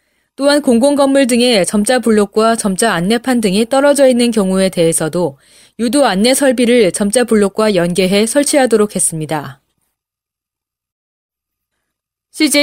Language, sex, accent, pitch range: Korean, female, native, 190-275 Hz